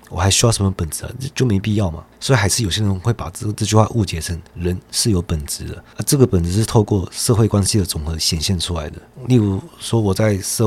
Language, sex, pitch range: Chinese, male, 85-110 Hz